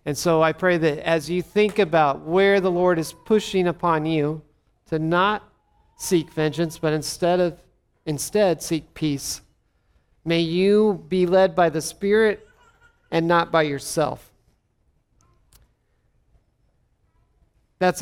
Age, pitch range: 40-59, 155-190 Hz